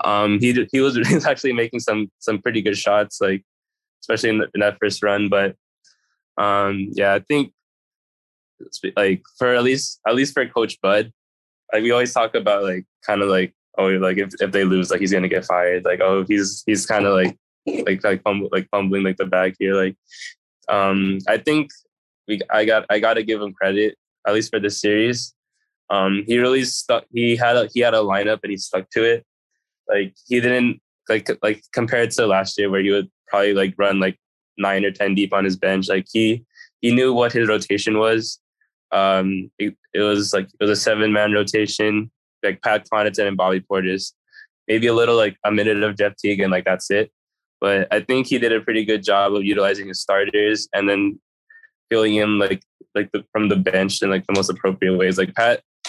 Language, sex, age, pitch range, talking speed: English, male, 10-29, 95-115 Hz, 210 wpm